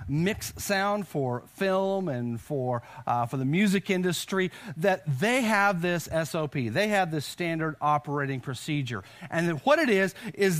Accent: American